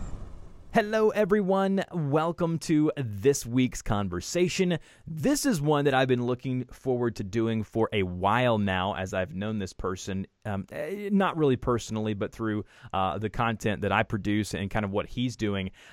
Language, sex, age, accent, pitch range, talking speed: English, male, 30-49, American, 110-155 Hz, 165 wpm